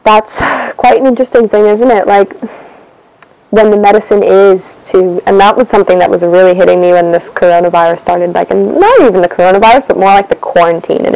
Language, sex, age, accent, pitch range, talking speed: English, female, 10-29, American, 185-225 Hz, 205 wpm